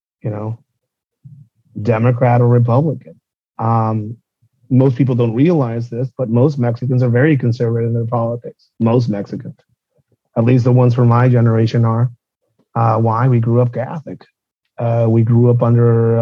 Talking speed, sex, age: 155 wpm, male, 30-49